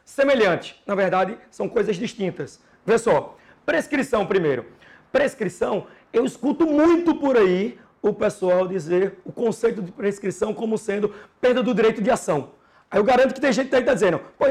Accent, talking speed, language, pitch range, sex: Brazilian, 165 wpm, Portuguese, 205-275 Hz, male